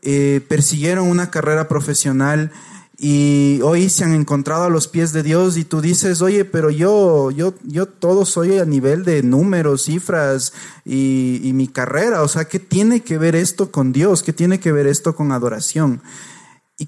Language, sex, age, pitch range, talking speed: Spanish, male, 30-49, 140-170 Hz, 180 wpm